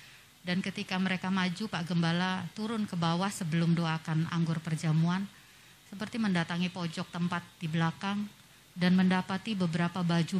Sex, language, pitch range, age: female, Indonesian, 165-195 Hz, 30-49